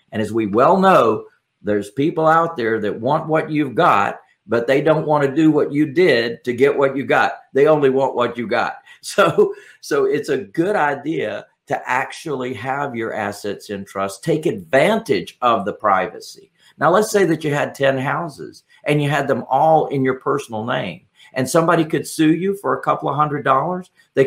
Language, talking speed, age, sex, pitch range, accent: English, 200 wpm, 50-69, male, 125-160 Hz, American